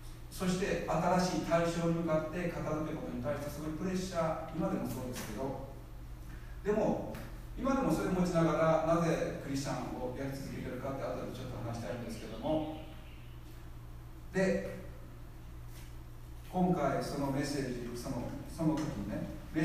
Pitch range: 110-160 Hz